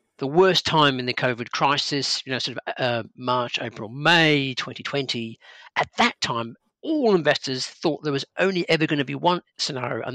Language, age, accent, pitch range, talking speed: English, 50-69, British, 125-150 Hz, 190 wpm